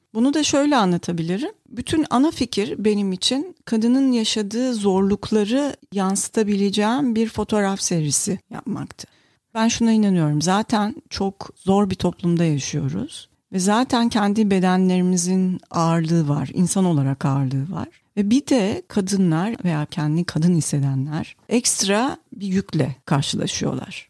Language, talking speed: Turkish, 120 wpm